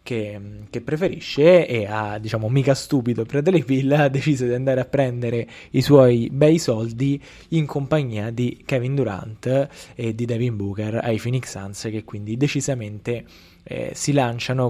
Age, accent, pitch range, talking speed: 20-39, native, 115-135 Hz, 155 wpm